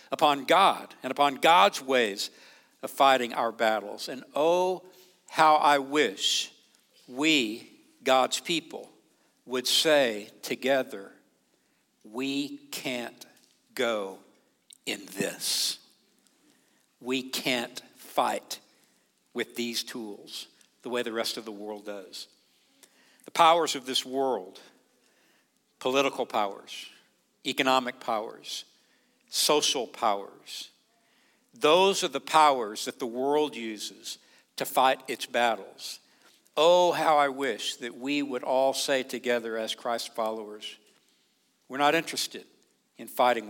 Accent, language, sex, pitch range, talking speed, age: American, English, male, 120-150 Hz, 110 wpm, 60-79